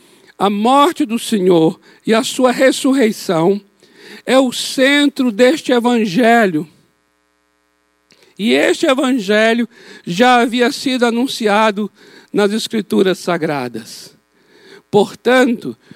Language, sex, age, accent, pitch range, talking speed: Portuguese, male, 60-79, Brazilian, 200-250 Hz, 90 wpm